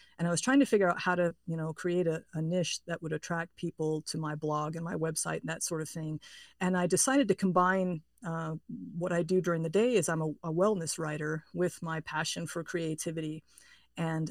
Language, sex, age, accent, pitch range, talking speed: English, female, 50-69, American, 160-190 Hz, 225 wpm